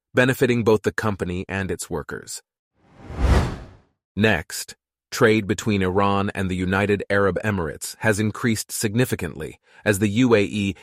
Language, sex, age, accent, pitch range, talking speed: English, male, 30-49, American, 95-120 Hz, 120 wpm